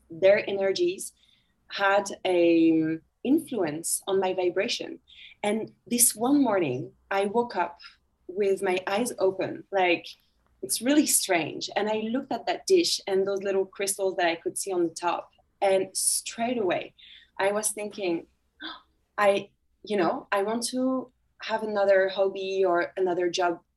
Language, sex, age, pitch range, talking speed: English, female, 20-39, 185-220 Hz, 145 wpm